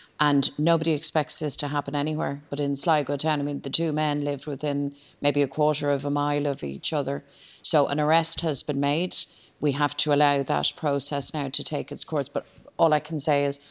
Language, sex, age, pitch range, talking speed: English, female, 40-59, 140-150 Hz, 220 wpm